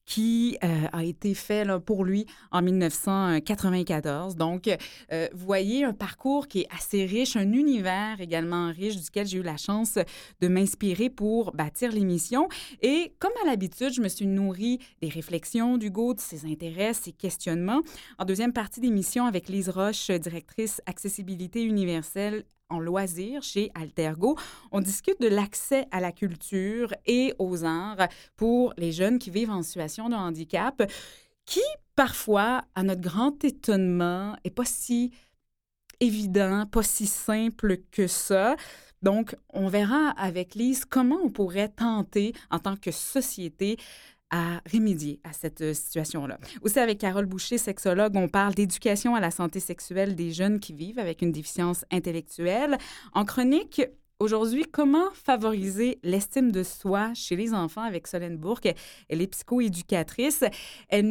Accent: Canadian